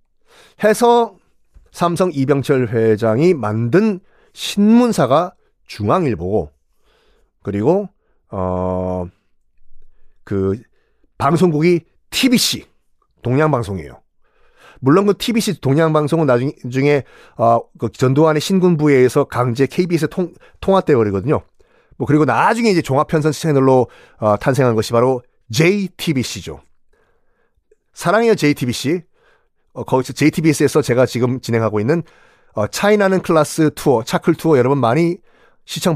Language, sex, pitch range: Korean, male, 130-190 Hz